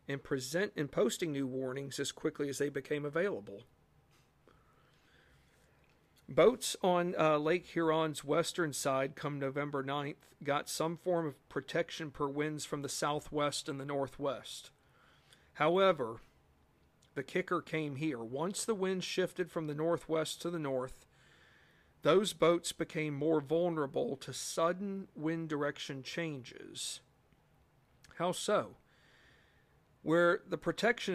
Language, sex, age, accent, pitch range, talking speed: English, male, 50-69, American, 140-175 Hz, 125 wpm